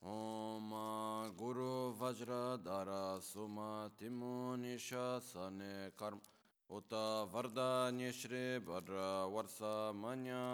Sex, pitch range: male, 95-125 Hz